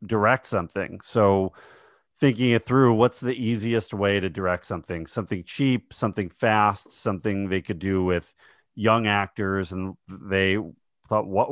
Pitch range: 90-115 Hz